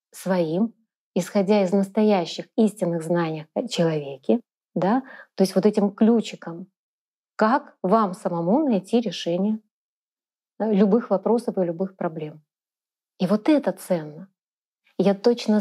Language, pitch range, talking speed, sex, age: Russian, 175-205 Hz, 110 wpm, female, 30-49